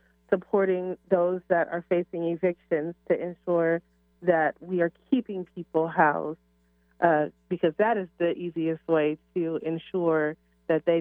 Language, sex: English, female